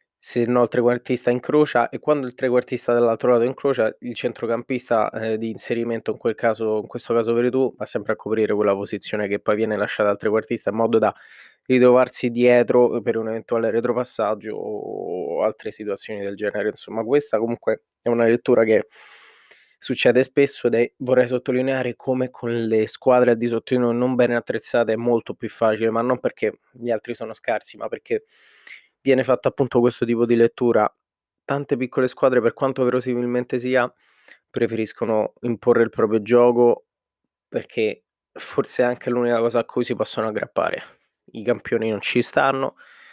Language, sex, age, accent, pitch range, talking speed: Italian, male, 20-39, native, 115-130 Hz, 170 wpm